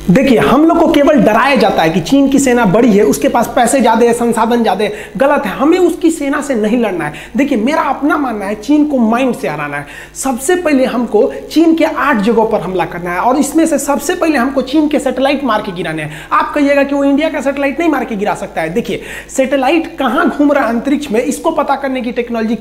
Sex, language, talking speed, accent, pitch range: male, Hindi, 245 wpm, native, 245-295 Hz